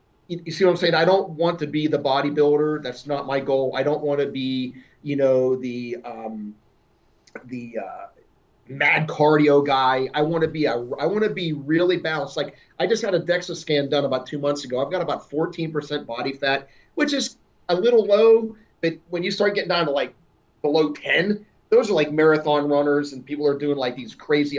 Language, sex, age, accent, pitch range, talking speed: English, male, 30-49, American, 130-160 Hz, 205 wpm